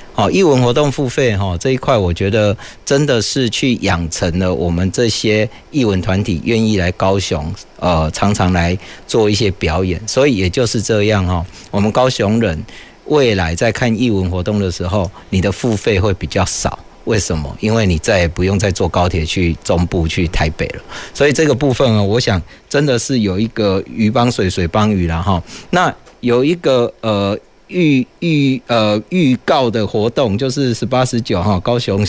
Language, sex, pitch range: Chinese, male, 95-130 Hz